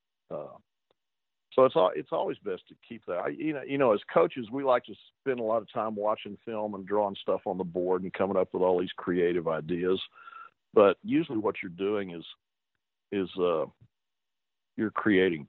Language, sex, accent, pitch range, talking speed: English, male, American, 90-110 Hz, 200 wpm